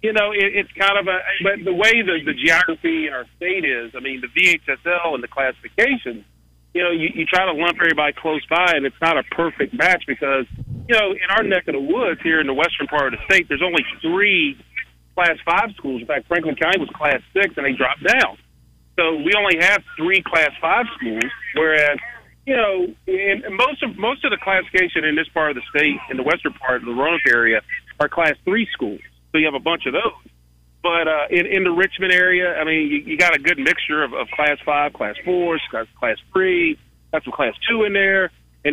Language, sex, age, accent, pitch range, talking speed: English, male, 40-59, American, 140-190 Hz, 230 wpm